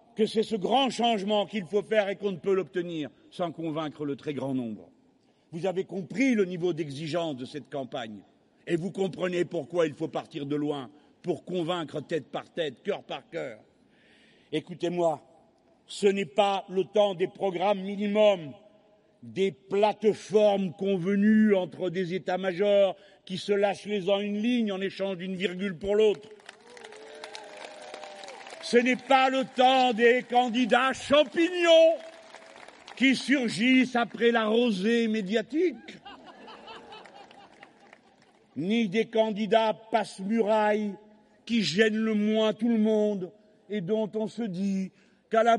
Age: 50-69